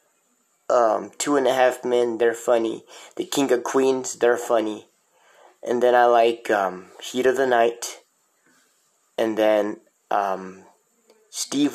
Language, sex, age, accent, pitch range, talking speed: English, male, 30-49, American, 115-145 Hz, 140 wpm